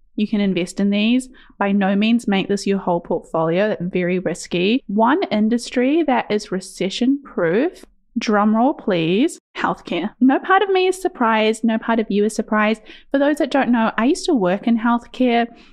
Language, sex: English, female